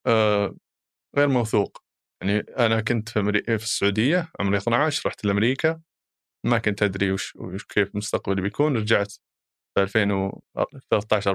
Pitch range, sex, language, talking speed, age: 105-135 Hz, male, Arabic, 115 wpm, 20-39